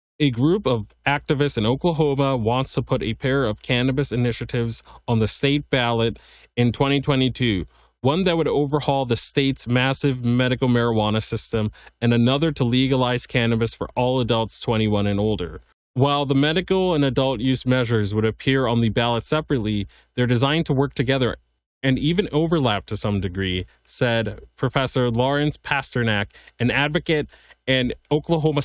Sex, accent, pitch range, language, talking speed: male, American, 110-135 Hz, English, 155 wpm